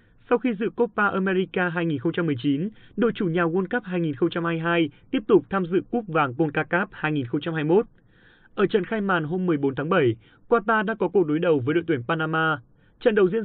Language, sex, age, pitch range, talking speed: Vietnamese, male, 30-49, 150-205 Hz, 185 wpm